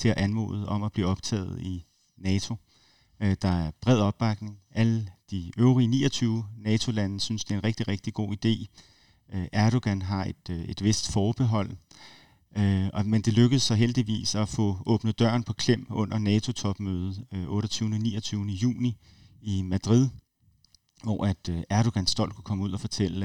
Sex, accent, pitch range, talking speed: male, native, 95-115 Hz, 155 wpm